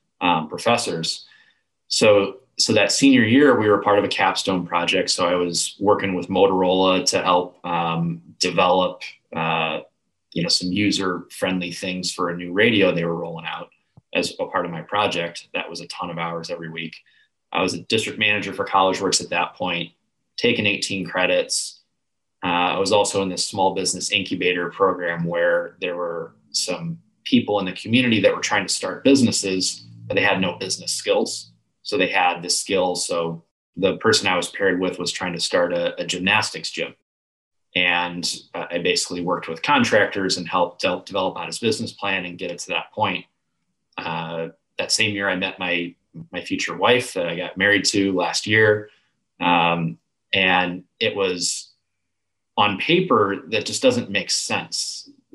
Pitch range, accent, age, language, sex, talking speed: 85-105 Hz, American, 20-39, English, male, 180 wpm